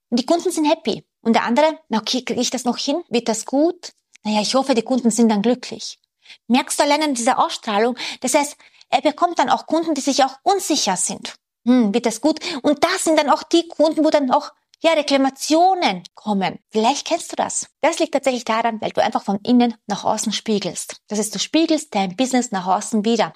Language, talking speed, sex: German, 215 wpm, female